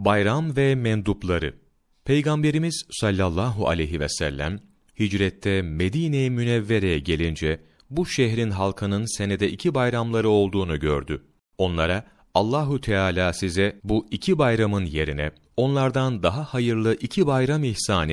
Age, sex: 40-59, male